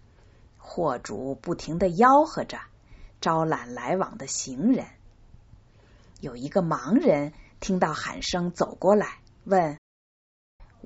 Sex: female